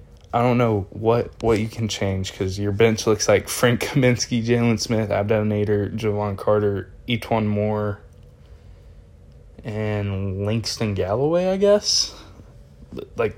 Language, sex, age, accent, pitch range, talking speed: English, male, 20-39, American, 100-115 Hz, 130 wpm